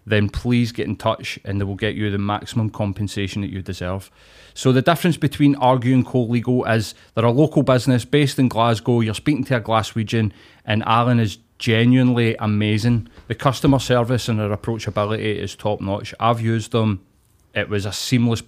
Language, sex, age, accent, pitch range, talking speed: English, male, 30-49, British, 105-125 Hz, 180 wpm